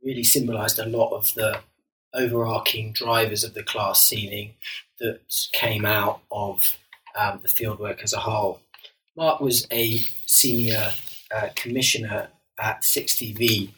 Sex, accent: male, British